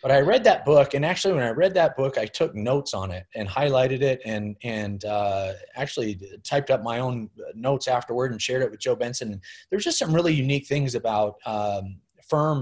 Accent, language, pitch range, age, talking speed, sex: American, English, 100-120 Hz, 30-49, 215 wpm, male